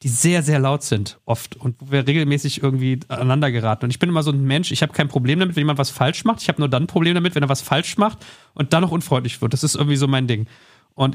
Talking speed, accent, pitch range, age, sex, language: 290 wpm, German, 130-165 Hz, 40-59, male, German